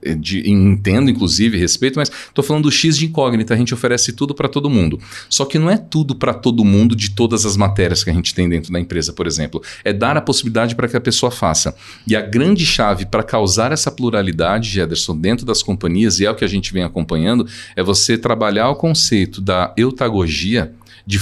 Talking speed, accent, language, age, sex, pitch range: 215 wpm, Brazilian, Portuguese, 40-59, male, 95-125 Hz